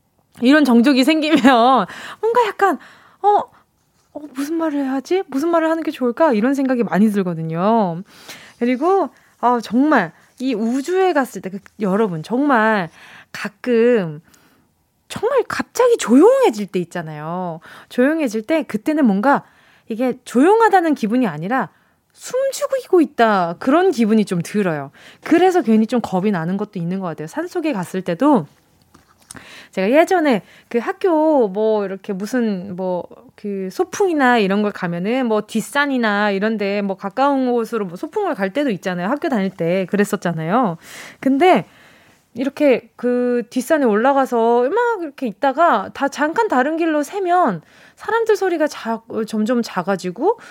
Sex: female